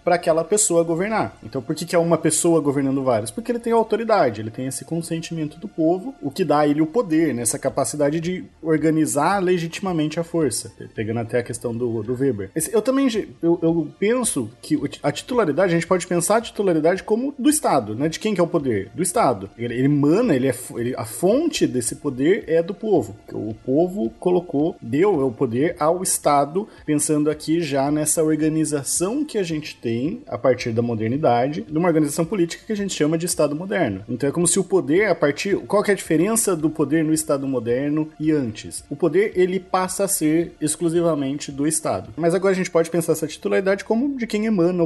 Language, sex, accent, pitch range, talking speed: Portuguese, male, Brazilian, 135-180 Hz, 205 wpm